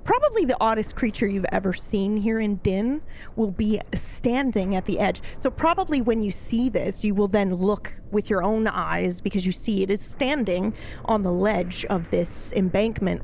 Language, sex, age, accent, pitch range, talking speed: English, female, 30-49, American, 185-230 Hz, 190 wpm